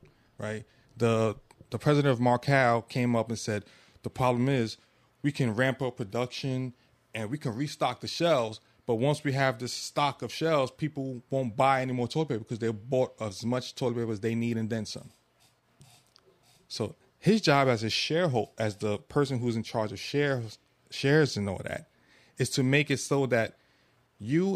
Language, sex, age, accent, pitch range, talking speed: English, male, 30-49, American, 115-145 Hz, 190 wpm